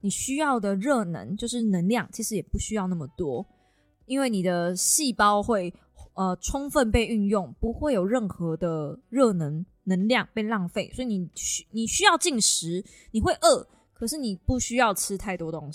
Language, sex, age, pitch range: Chinese, female, 20-39, 190-260 Hz